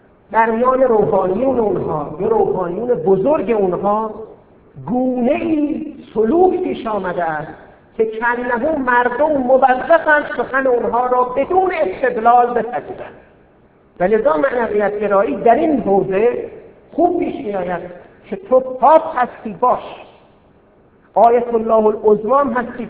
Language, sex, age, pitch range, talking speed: Persian, male, 50-69, 195-290 Hz, 100 wpm